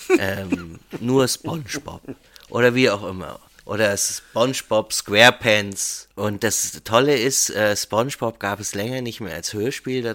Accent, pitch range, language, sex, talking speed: German, 95-160 Hz, German, male, 140 wpm